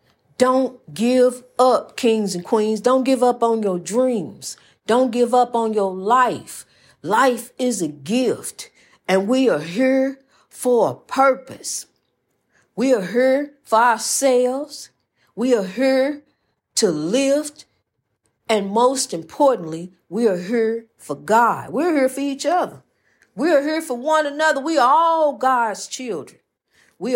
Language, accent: English, American